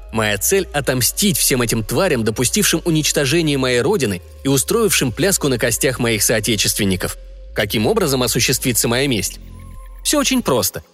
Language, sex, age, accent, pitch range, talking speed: Russian, male, 20-39, native, 120-175 Hz, 135 wpm